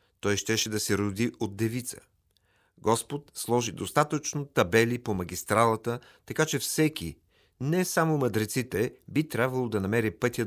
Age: 40-59